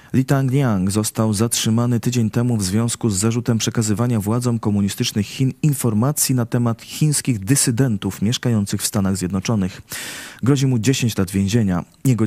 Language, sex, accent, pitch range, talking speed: Polish, male, native, 105-125 Hz, 145 wpm